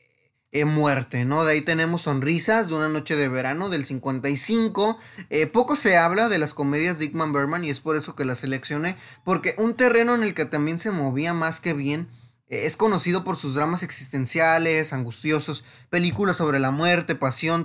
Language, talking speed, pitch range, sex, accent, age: Spanish, 185 wpm, 135-175 Hz, male, Mexican, 20-39